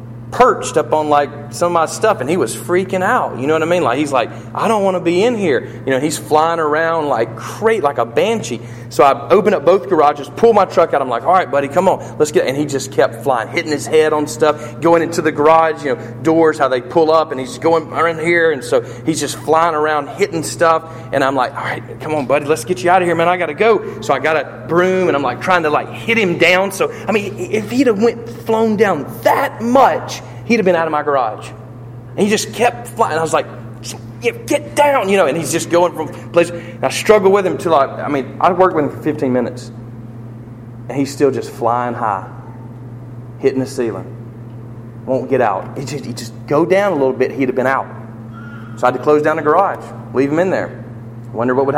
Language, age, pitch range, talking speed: English, 40-59, 120-170 Hz, 250 wpm